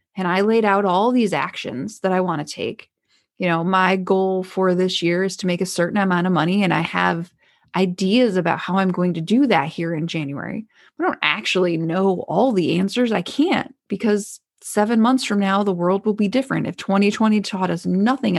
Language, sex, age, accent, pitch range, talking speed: English, female, 20-39, American, 185-235 Hz, 210 wpm